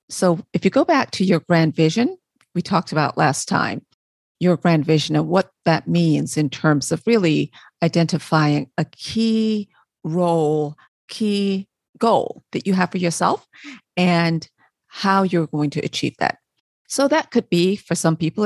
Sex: female